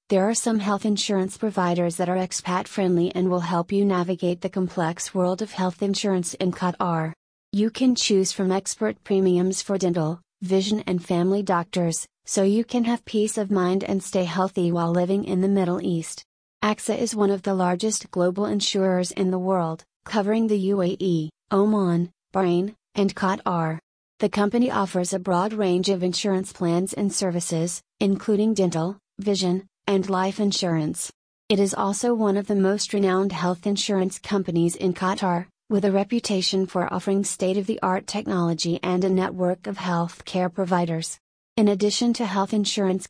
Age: 30-49